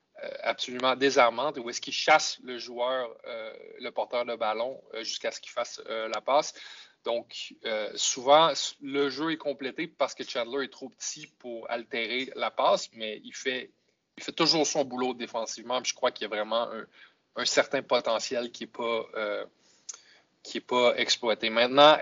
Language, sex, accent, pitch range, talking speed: French, male, Canadian, 115-140 Hz, 165 wpm